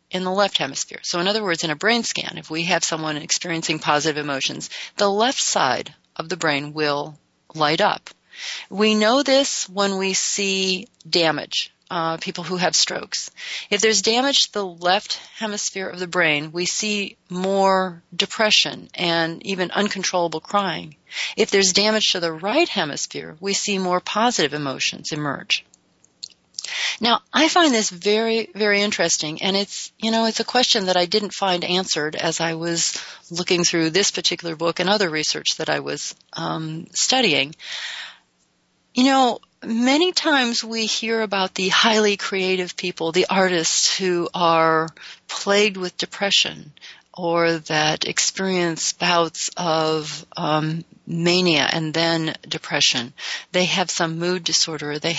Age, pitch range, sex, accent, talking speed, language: 40-59, 165-210 Hz, female, American, 150 wpm, English